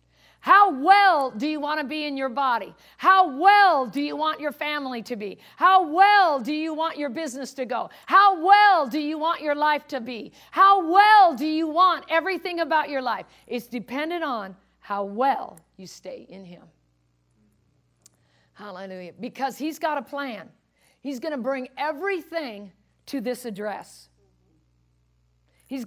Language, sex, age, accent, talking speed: English, female, 50-69, American, 160 wpm